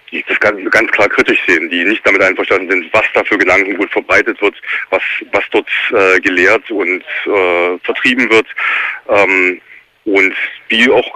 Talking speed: 160 wpm